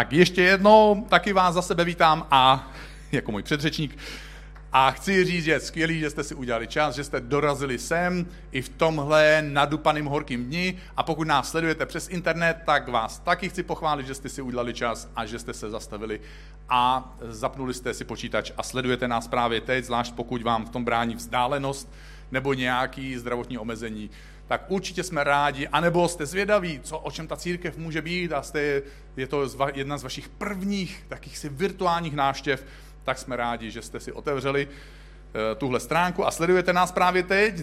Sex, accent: male, native